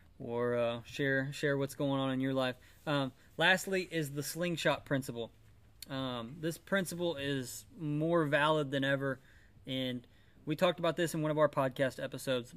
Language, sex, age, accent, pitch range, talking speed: English, male, 20-39, American, 120-150 Hz, 165 wpm